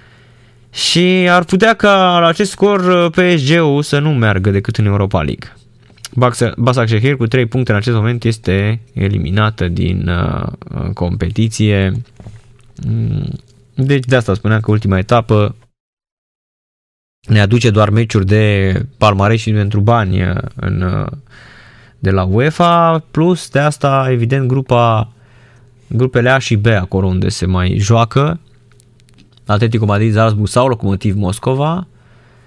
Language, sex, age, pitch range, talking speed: Romanian, male, 20-39, 105-130 Hz, 120 wpm